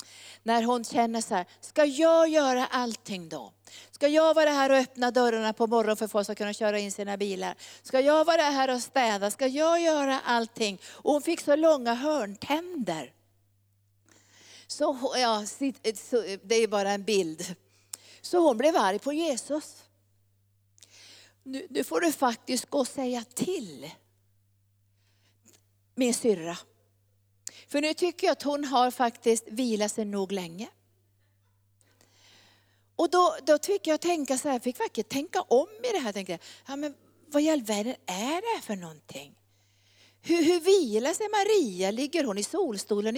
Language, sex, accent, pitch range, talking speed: Swedish, female, native, 170-280 Hz, 155 wpm